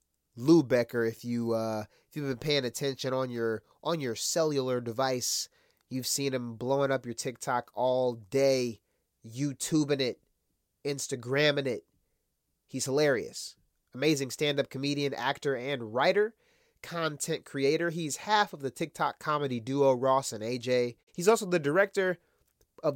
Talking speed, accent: 140 wpm, American